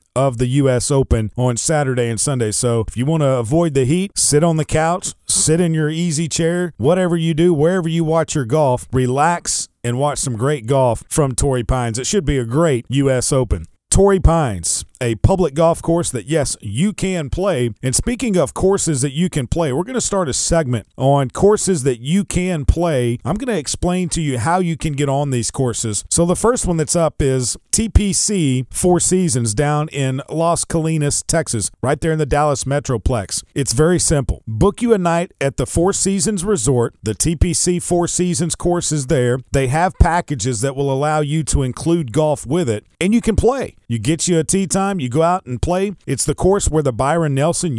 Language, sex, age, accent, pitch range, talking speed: English, male, 40-59, American, 130-170 Hz, 210 wpm